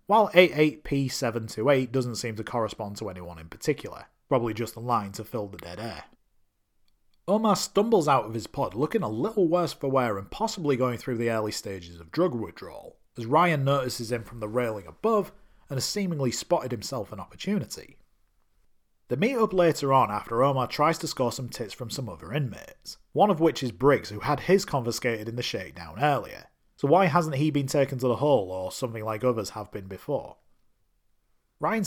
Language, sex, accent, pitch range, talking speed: English, male, British, 110-150 Hz, 190 wpm